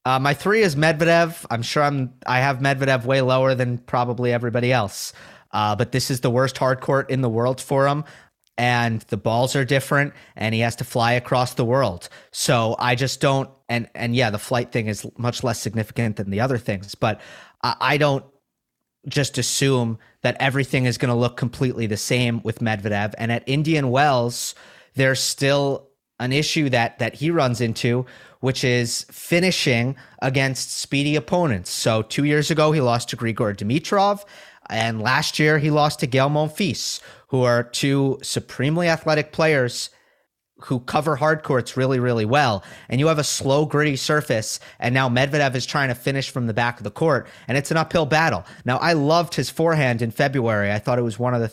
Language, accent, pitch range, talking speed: English, American, 120-150 Hz, 190 wpm